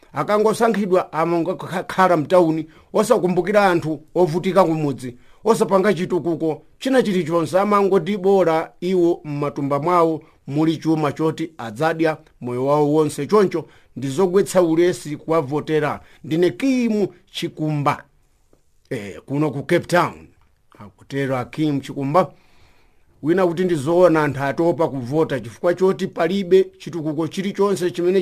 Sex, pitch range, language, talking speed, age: male, 150-190 Hz, English, 115 wpm, 50-69